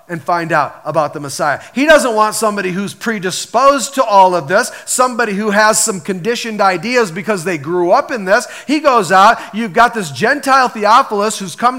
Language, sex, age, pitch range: Japanese, male, 40-59, 215-255 Hz